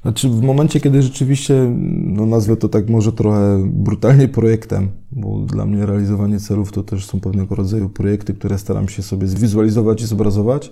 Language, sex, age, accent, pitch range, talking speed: Polish, male, 20-39, native, 100-115 Hz, 175 wpm